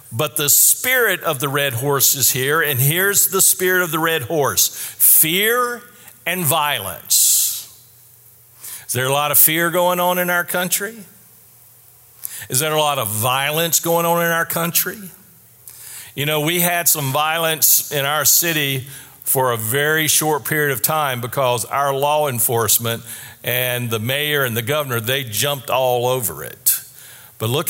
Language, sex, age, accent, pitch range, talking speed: English, male, 50-69, American, 125-170 Hz, 165 wpm